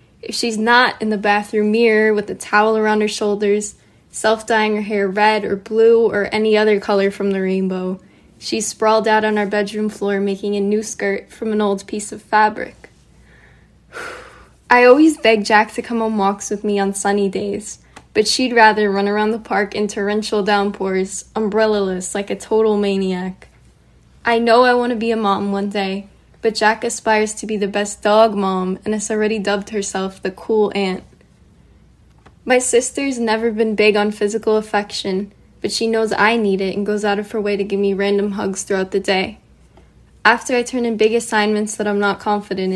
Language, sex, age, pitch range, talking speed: English, female, 10-29, 200-220 Hz, 190 wpm